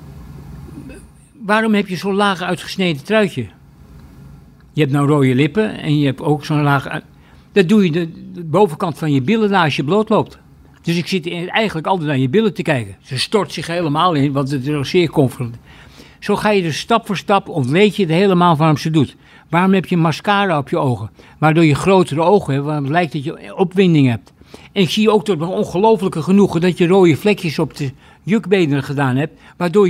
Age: 60-79